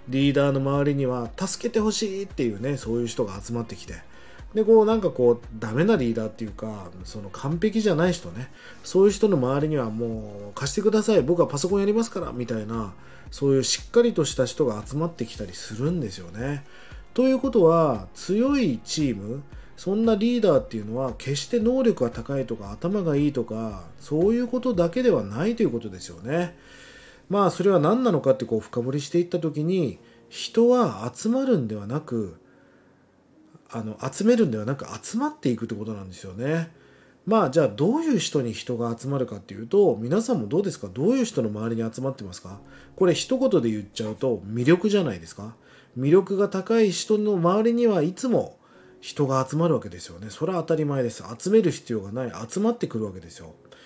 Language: Japanese